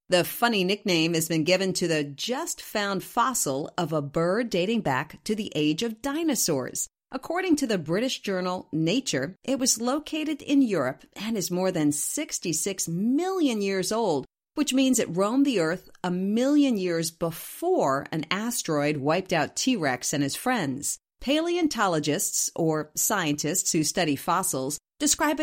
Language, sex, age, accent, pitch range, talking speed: English, female, 40-59, American, 160-255 Hz, 150 wpm